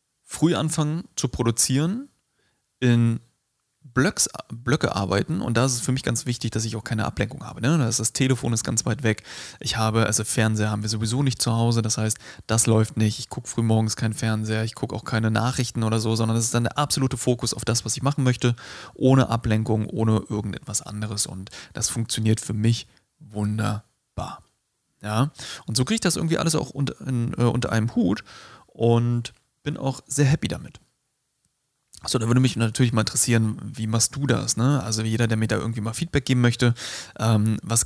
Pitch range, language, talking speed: 110-130 Hz, German, 200 wpm